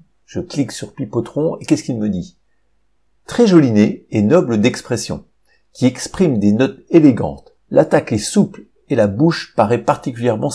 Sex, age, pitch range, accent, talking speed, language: male, 50-69, 105-140 Hz, French, 160 wpm, French